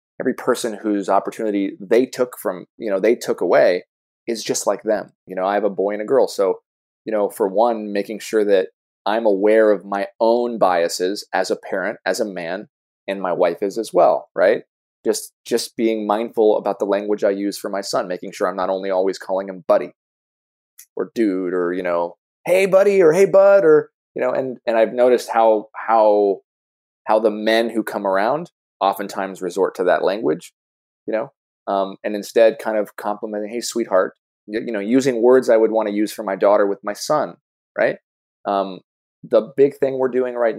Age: 20-39